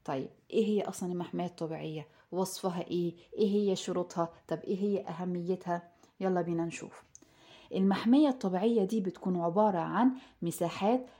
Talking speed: 135 wpm